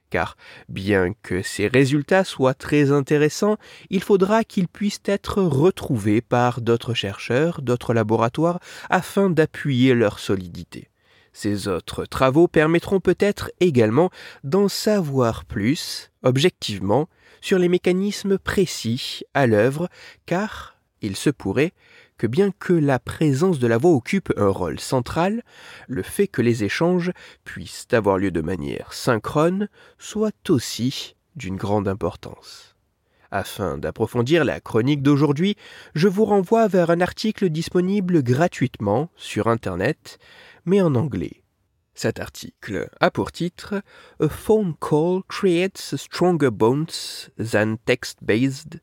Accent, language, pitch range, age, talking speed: French, French, 115-185 Hz, 30-49, 130 wpm